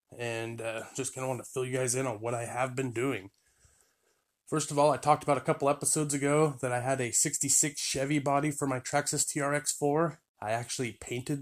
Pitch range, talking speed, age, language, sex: 115-135 Hz, 215 wpm, 20-39, English, male